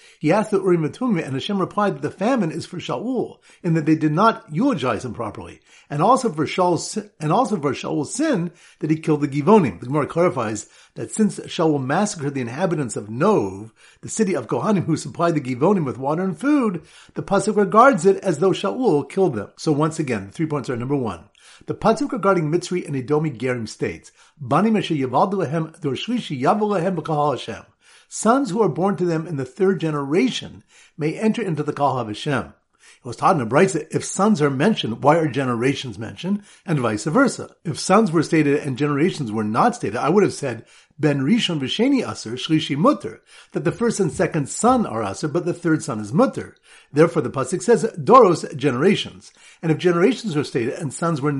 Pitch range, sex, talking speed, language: 145-205 Hz, male, 195 wpm, English